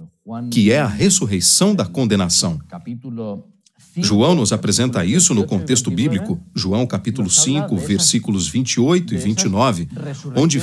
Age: 40-59